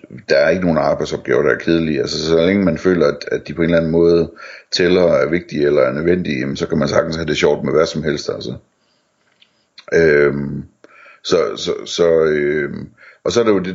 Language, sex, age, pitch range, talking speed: Danish, male, 60-79, 80-95 Hz, 220 wpm